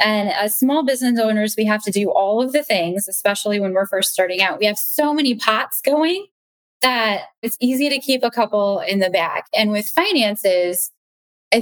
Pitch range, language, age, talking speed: 180-240 Hz, English, 10-29, 200 wpm